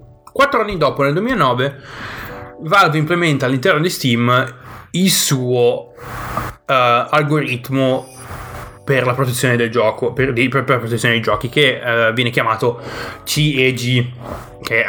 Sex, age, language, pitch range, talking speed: male, 20-39, Italian, 115-140 Hz, 125 wpm